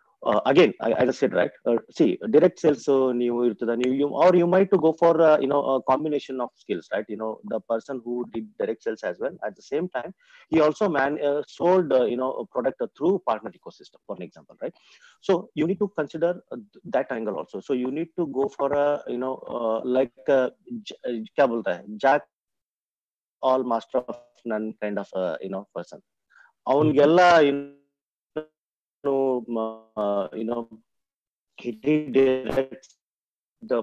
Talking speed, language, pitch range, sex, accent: 190 wpm, Kannada, 115-160 Hz, male, native